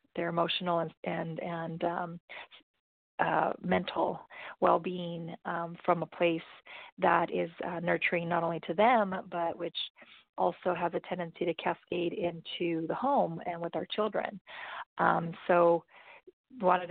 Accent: American